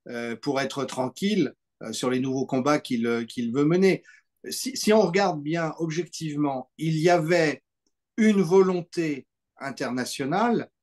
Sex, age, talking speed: male, 50-69, 125 wpm